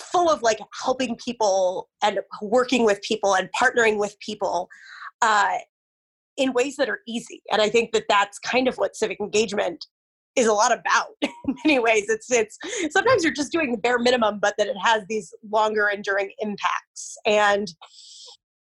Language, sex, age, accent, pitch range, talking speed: English, female, 20-39, American, 205-255 Hz, 175 wpm